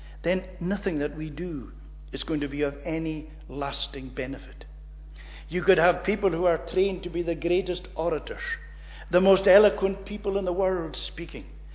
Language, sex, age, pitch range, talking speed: English, male, 60-79, 150-200 Hz, 170 wpm